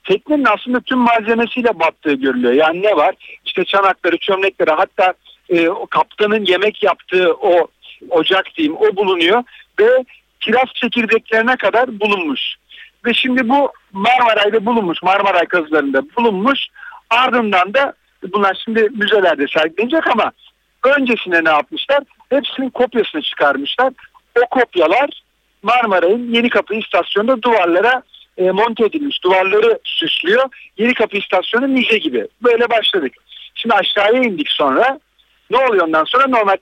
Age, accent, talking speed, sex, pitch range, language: 60-79, native, 125 wpm, male, 195-260 Hz, Turkish